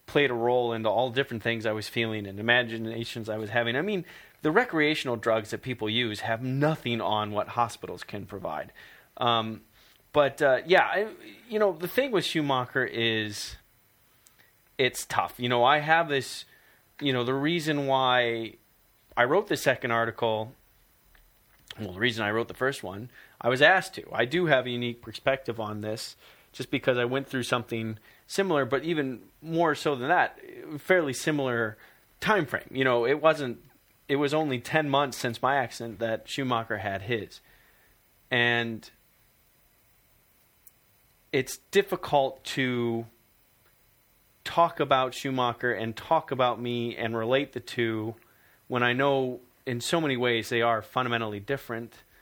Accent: American